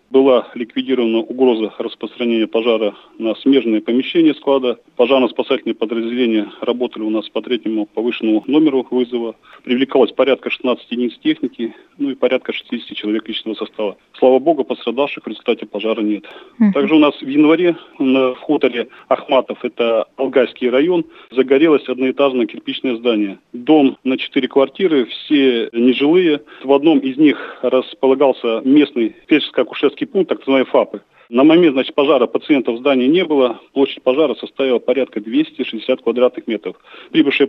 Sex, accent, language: male, native, Russian